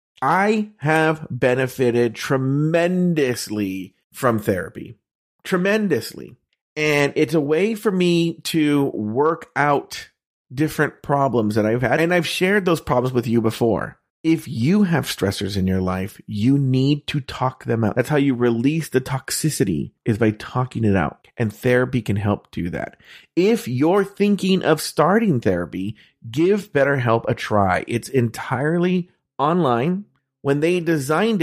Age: 30-49